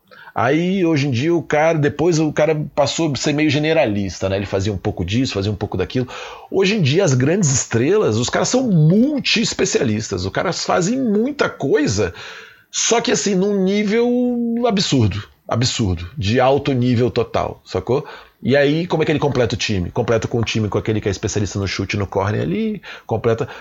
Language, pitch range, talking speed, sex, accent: Portuguese, 100-145 Hz, 190 wpm, male, Brazilian